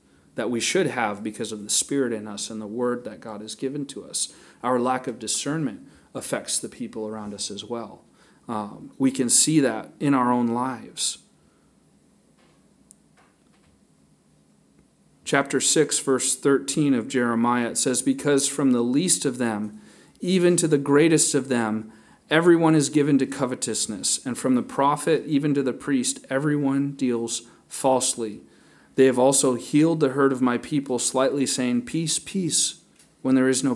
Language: English